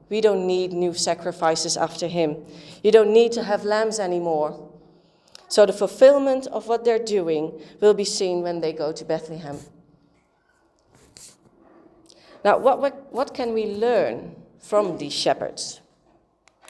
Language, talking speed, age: English, 135 wpm, 30-49